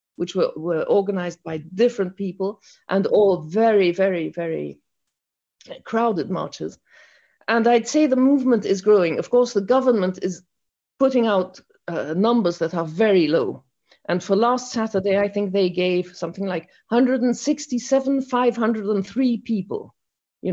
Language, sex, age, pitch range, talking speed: English, female, 50-69, 175-235 Hz, 140 wpm